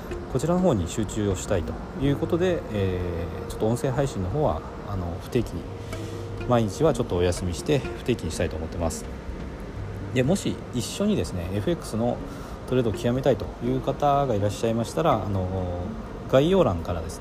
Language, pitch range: Japanese, 95-130 Hz